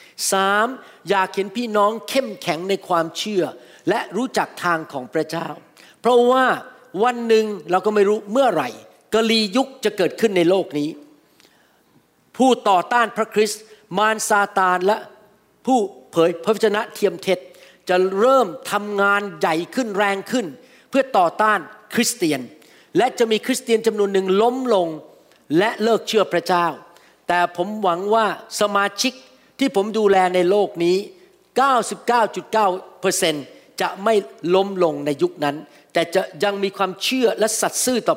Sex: male